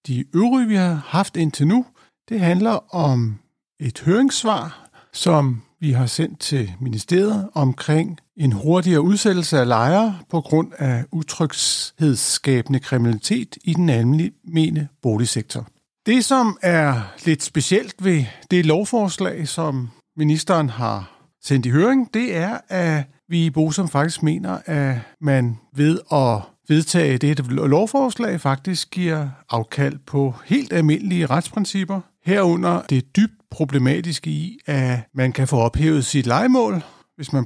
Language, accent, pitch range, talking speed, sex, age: Danish, native, 135-180 Hz, 135 wpm, male, 60-79